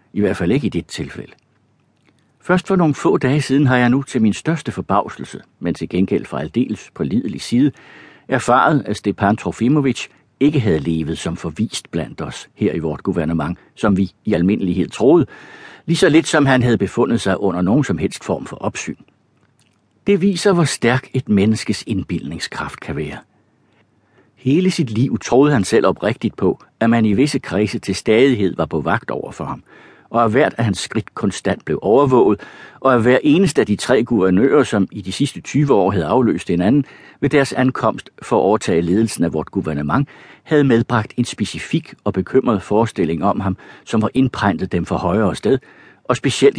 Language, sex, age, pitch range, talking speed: Danish, male, 60-79, 100-135 Hz, 190 wpm